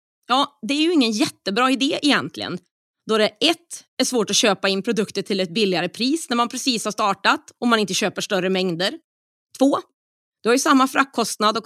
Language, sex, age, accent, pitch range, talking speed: Swedish, female, 30-49, native, 205-275 Hz, 200 wpm